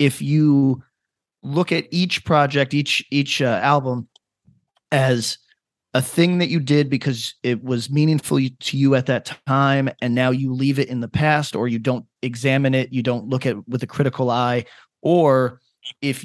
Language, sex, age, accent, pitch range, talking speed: English, male, 30-49, American, 125-150 Hz, 180 wpm